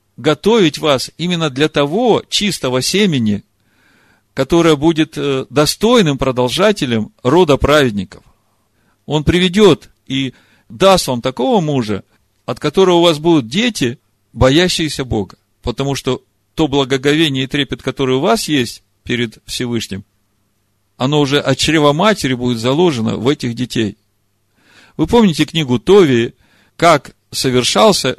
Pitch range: 110-155 Hz